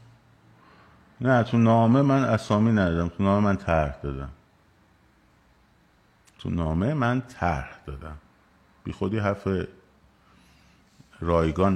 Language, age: Persian, 50-69